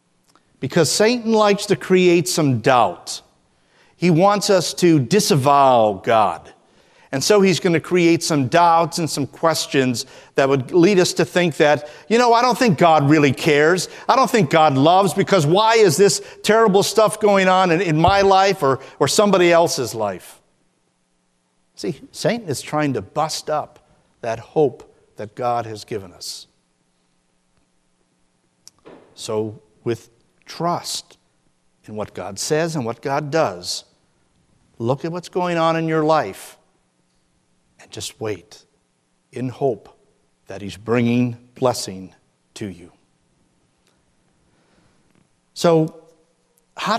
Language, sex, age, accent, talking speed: English, male, 50-69, American, 135 wpm